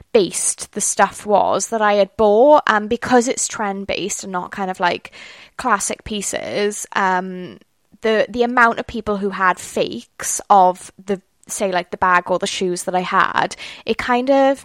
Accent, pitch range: British, 185-220 Hz